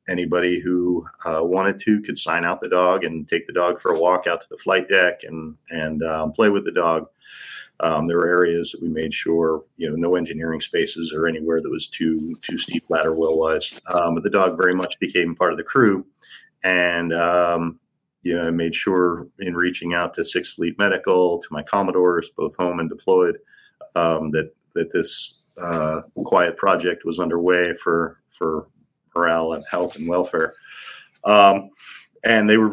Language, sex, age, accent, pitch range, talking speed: English, male, 50-69, American, 80-90 Hz, 185 wpm